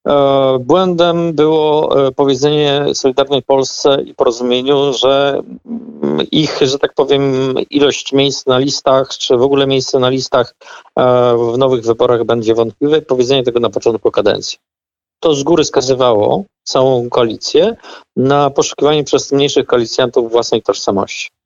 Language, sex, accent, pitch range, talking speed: Polish, male, native, 135-200 Hz, 125 wpm